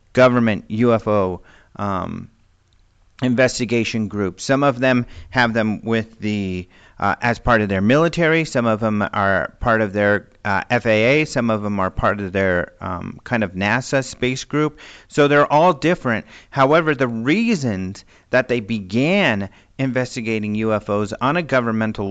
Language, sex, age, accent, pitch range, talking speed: English, male, 40-59, American, 105-140 Hz, 150 wpm